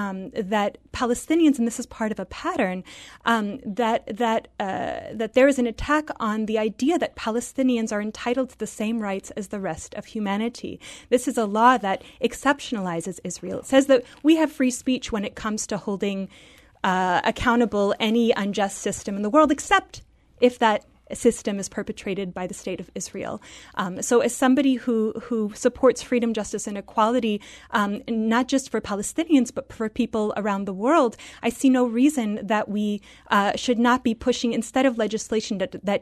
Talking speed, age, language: 185 wpm, 30-49, English